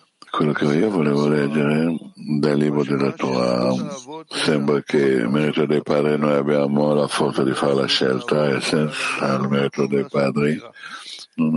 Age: 60-79